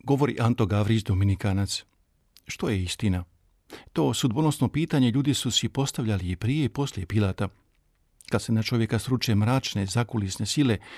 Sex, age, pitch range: male, 50-69, 100-130 Hz